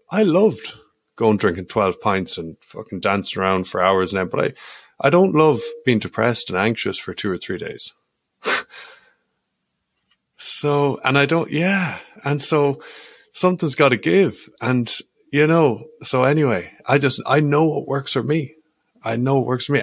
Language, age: English, 30-49